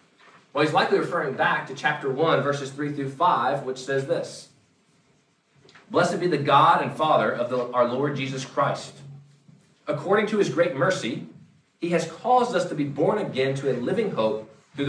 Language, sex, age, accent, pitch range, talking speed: English, male, 40-59, American, 135-180 Hz, 175 wpm